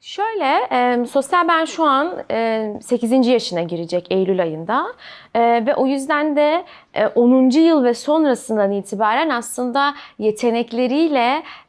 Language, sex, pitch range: Turkish, female, 210-265 Hz